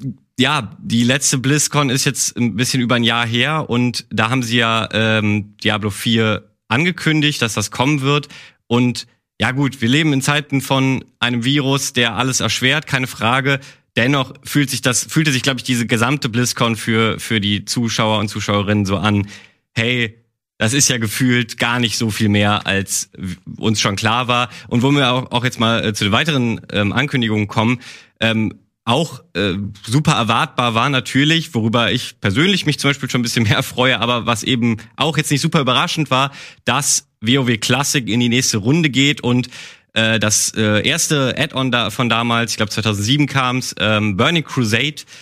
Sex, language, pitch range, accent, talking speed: male, German, 110-135 Hz, German, 185 wpm